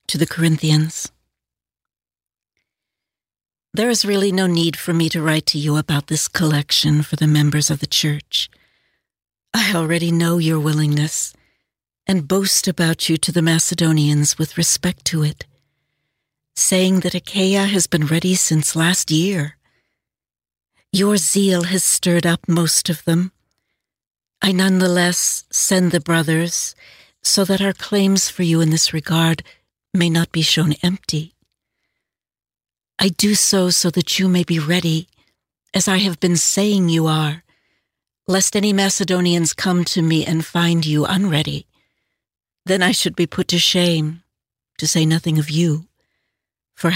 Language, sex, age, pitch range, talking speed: English, female, 60-79, 155-185 Hz, 145 wpm